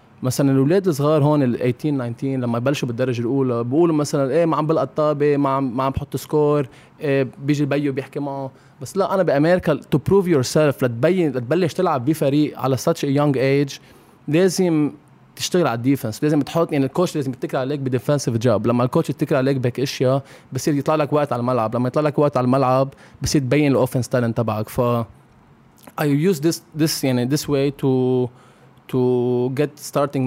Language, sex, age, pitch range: Arabic, male, 20-39, 125-150 Hz